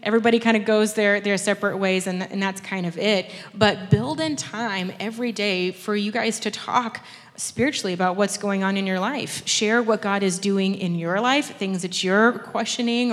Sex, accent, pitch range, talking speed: female, American, 185-225 Hz, 205 wpm